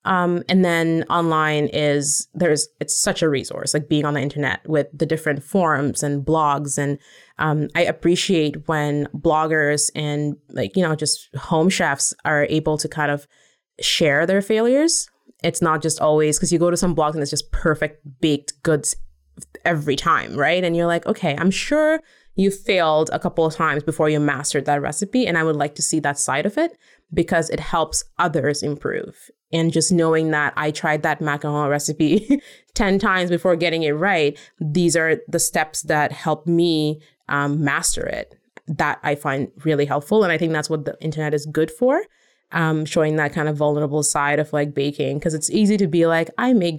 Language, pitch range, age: English, 150-175 Hz, 20-39